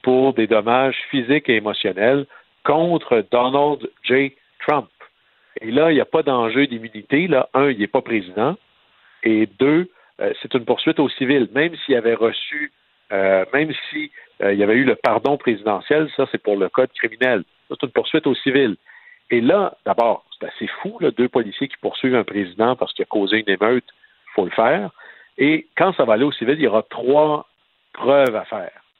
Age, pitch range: 60-79, 115-150 Hz